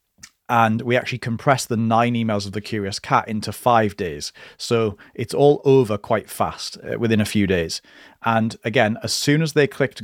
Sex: male